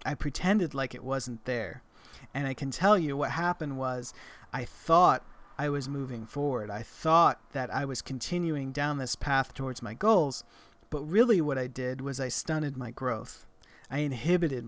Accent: American